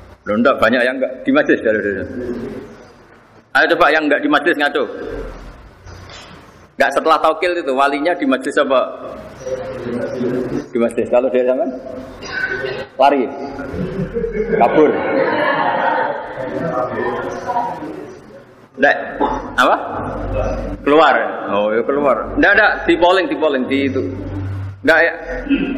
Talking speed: 105 wpm